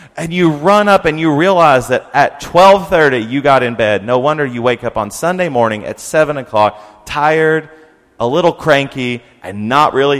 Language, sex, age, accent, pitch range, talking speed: English, male, 30-49, American, 115-170 Hz, 190 wpm